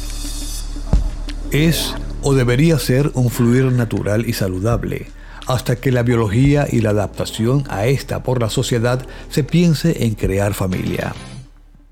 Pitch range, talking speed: 105-135 Hz, 130 wpm